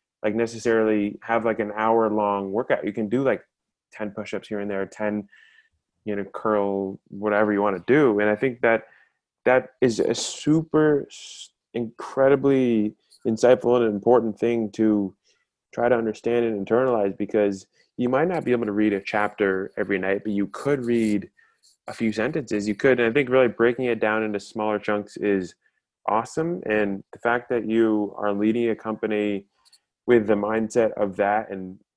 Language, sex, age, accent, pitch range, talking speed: English, male, 20-39, American, 100-115 Hz, 175 wpm